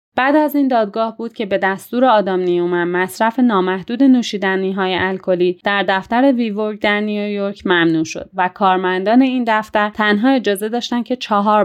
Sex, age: female, 30-49